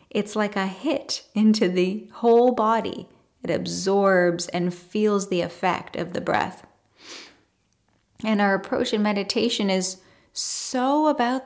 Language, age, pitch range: English, 10-29, 175-215 Hz